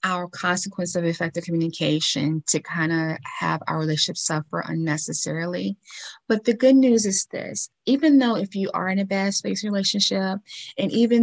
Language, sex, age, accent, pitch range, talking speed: English, female, 20-39, American, 165-190 Hz, 165 wpm